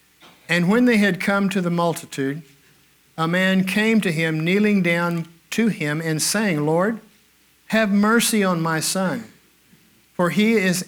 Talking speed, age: 155 wpm, 60-79